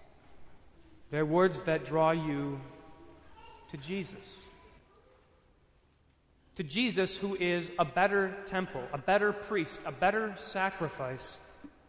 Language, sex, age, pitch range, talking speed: English, male, 30-49, 140-195 Hz, 100 wpm